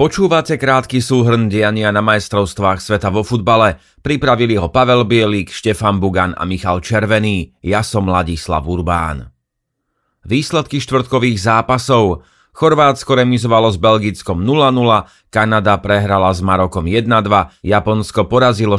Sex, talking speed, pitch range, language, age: male, 120 wpm, 95-120 Hz, Slovak, 30-49